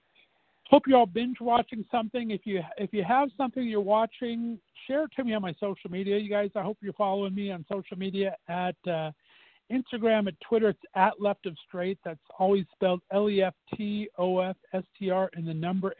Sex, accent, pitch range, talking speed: male, American, 175-210 Hz, 185 wpm